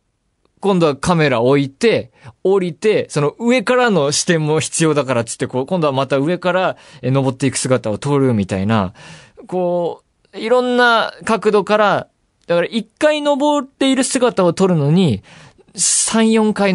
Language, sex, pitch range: Japanese, male, 115-185 Hz